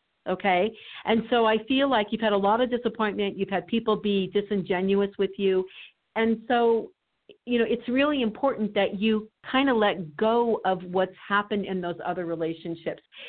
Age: 50-69